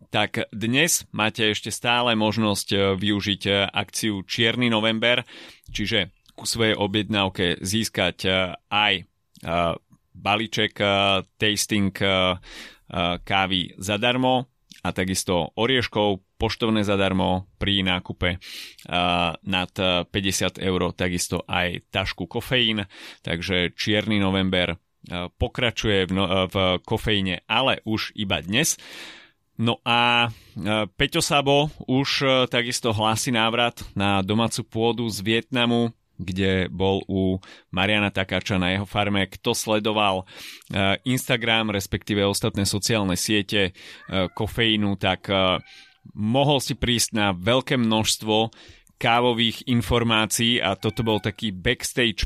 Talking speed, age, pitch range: 105 wpm, 30-49, 95-115 Hz